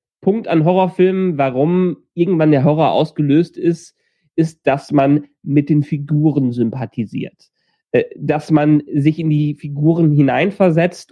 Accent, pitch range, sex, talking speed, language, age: German, 145-185 Hz, male, 125 wpm, German, 30-49